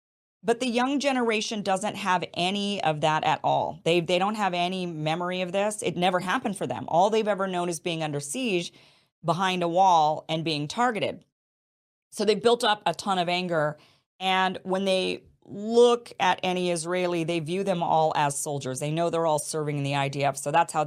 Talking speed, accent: 200 wpm, American